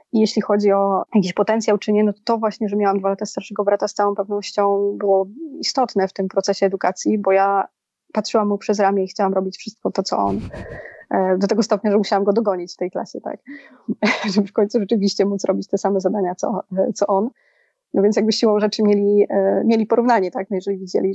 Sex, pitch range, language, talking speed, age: female, 190-210 Hz, Polish, 210 wpm, 20-39